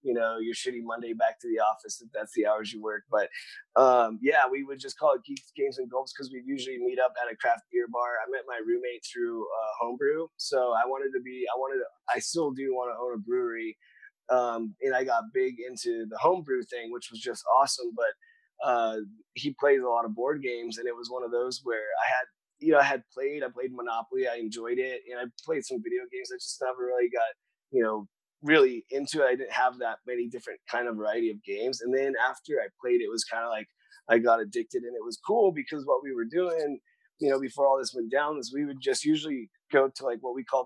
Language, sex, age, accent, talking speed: English, male, 20-39, American, 250 wpm